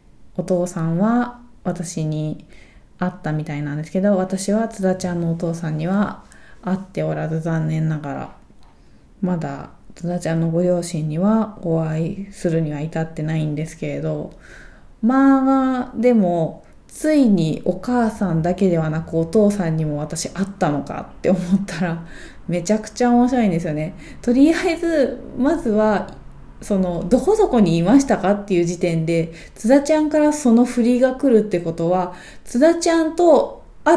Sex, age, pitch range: female, 20-39, 165-240 Hz